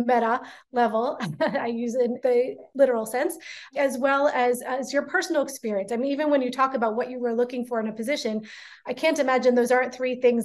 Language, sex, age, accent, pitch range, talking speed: English, female, 30-49, American, 235-280 Hz, 215 wpm